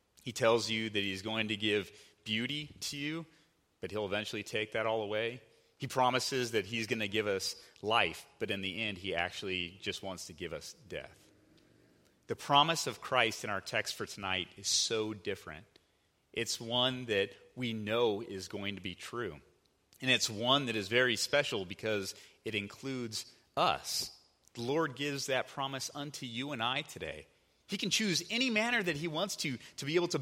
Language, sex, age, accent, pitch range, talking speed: English, male, 30-49, American, 110-165 Hz, 190 wpm